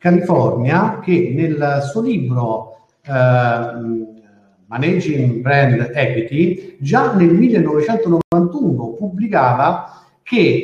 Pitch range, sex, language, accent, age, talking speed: 120-170 Hz, male, Italian, native, 50-69, 80 wpm